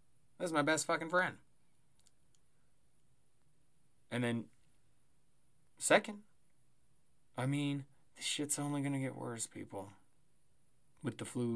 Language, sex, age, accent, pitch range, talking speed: English, male, 20-39, American, 120-155 Hz, 110 wpm